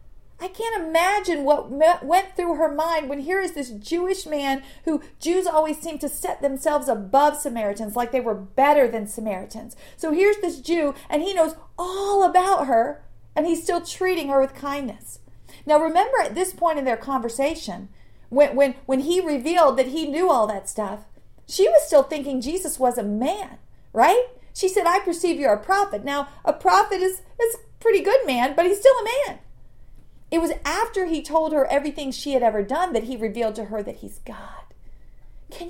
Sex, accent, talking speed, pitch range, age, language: female, American, 190 wpm, 275-385 Hz, 40-59, English